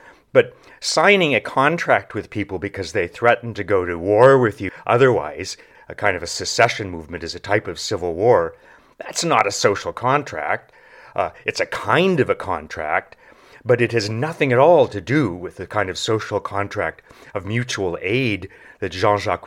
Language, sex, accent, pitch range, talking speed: English, male, American, 100-130 Hz, 180 wpm